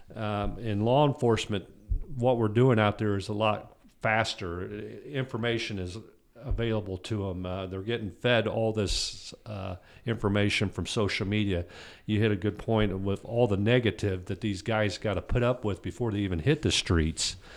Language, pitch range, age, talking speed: English, 95-115 Hz, 50-69, 180 wpm